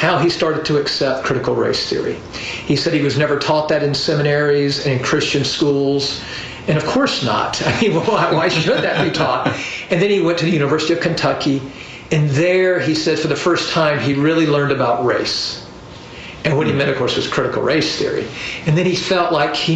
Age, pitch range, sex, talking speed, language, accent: 50-69, 140-170 Hz, male, 215 wpm, English, American